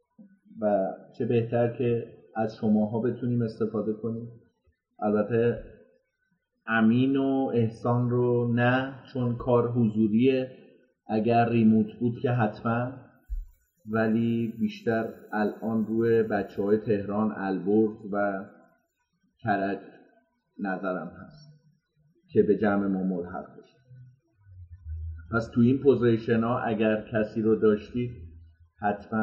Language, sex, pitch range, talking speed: Persian, male, 105-125 Hz, 105 wpm